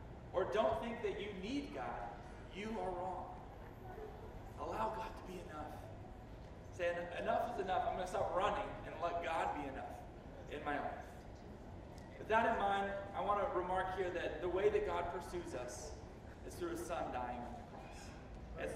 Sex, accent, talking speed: male, American, 180 wpm